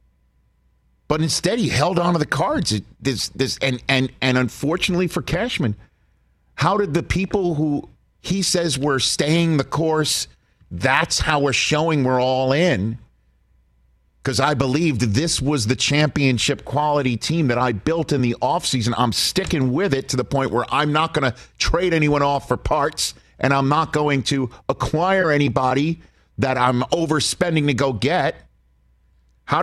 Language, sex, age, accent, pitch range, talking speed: English, male, 50-69, American, 100-150 Hz, 165 wpm